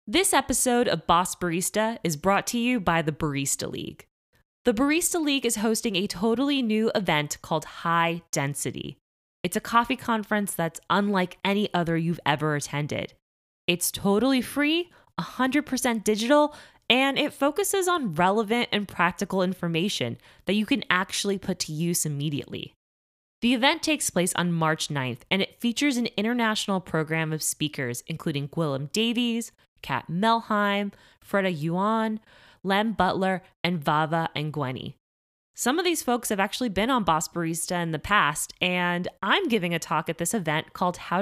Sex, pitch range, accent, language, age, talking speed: female, 165-235 Hz, American, English, 20-39, 155 wpm